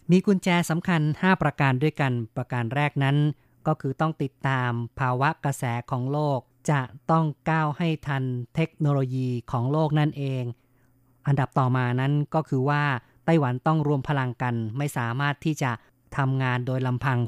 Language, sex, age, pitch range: Thai, female, 20-39, 125-150 Hz